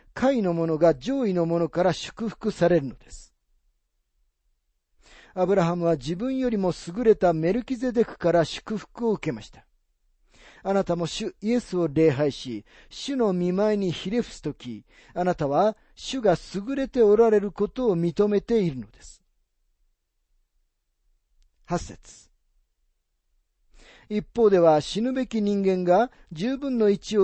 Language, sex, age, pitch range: Japanese, male, 40-59, 150-215 Hz